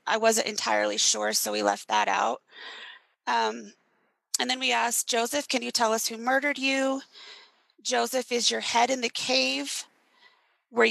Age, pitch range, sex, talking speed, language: 30-49, 215-260 Hz, female, 165 wpm, English